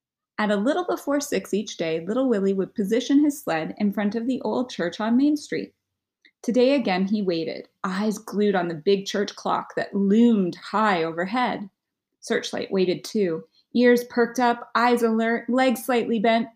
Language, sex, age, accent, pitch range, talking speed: English, female, 30-49, American, 195-240 Hz, 175 wpm